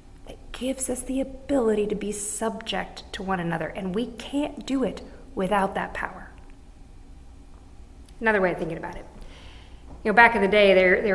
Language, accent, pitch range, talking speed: English, American, 175-275 Hz, 170 wpm